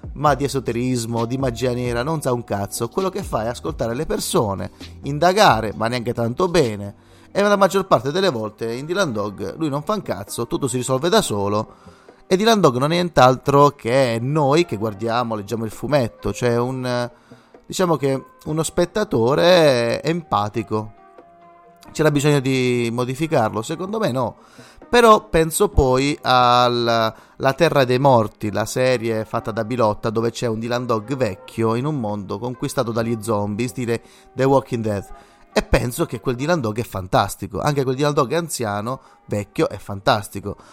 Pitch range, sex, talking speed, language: 110-145 Hz, male, 170 wpm, Italian